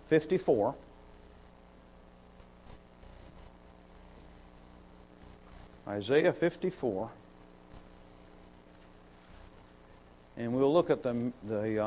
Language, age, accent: English, 50-69, American